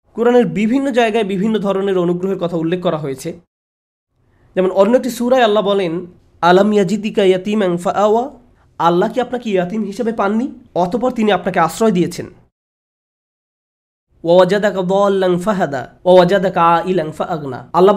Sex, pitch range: male, 175-230 Hz